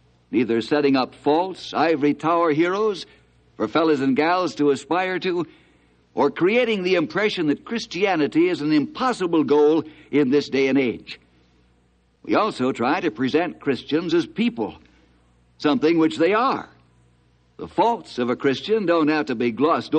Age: 60-79